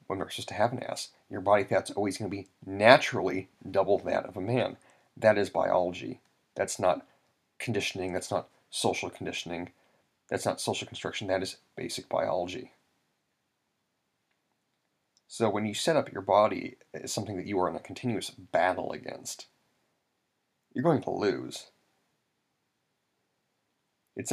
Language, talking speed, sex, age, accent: English, 145 wpm, male, 30-49, American